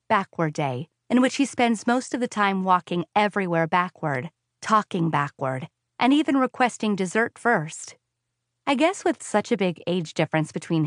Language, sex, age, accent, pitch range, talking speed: English, female, 30-49, American, 145-205 Hz, 160 wpm